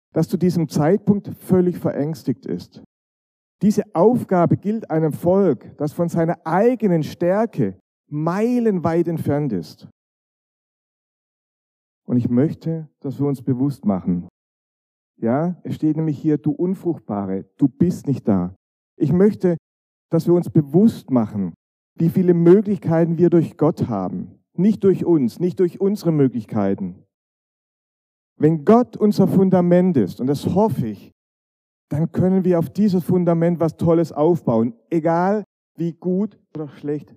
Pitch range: 140-185 Hz